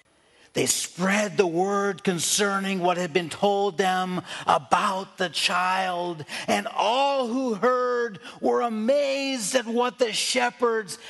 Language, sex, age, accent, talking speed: English, male, 40-59, American, 125 wpm